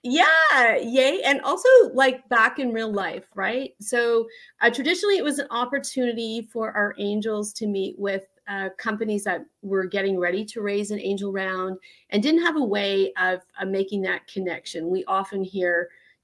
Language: English